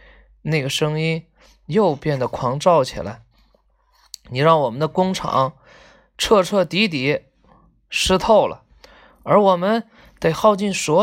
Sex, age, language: male, 20-39, Chinese